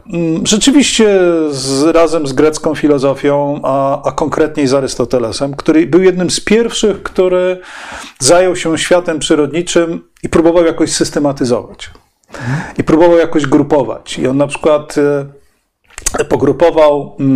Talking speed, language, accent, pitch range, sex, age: 120 wpm, Polish, native, 140-175 Hz, male, 40-59